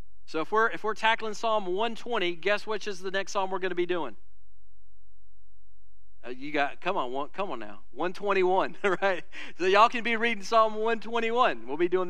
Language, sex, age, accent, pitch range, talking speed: English, male, 40-59, American, 120-180 Hz, 195 wpm